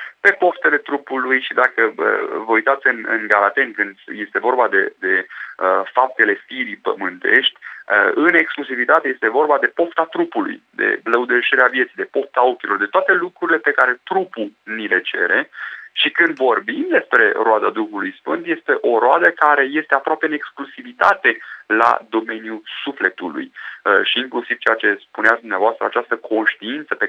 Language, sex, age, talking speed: Romanian, male, 30-49, 155 wpm